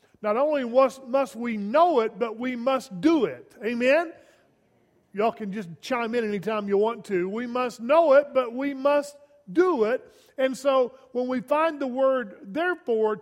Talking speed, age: 175 wpm, 50-69